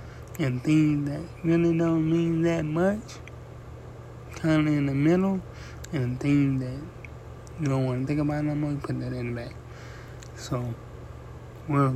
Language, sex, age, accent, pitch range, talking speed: English, male, 30-49, American, 125-155 Hz, 160 wpm